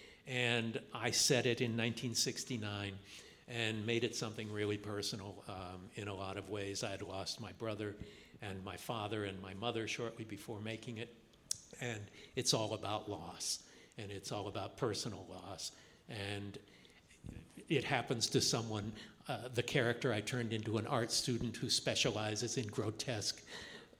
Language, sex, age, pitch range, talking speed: English, male, 60-79, 100-120 Hz, 155 wpm